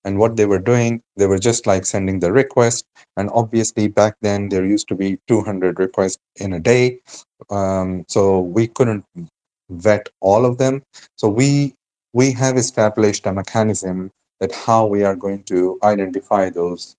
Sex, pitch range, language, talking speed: male, 95-115 Hz, English, 170 wpm